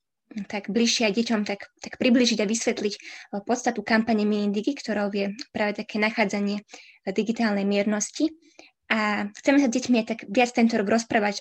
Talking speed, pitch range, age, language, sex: 145 wpm, 205-235 Hz, 20-39, Slovak, female